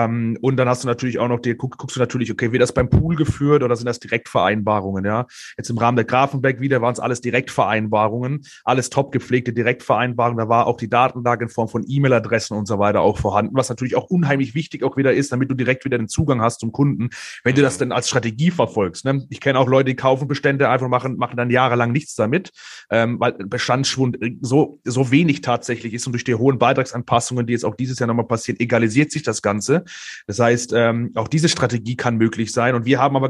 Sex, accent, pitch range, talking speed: male, German, 115-130 Hz, 230 wpm